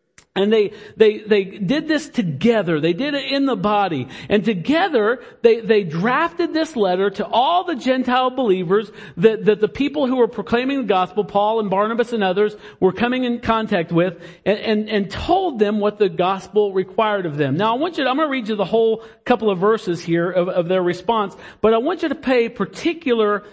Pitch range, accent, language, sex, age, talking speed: 170-230 Hz, American, English, male, 50-69, 210 wpm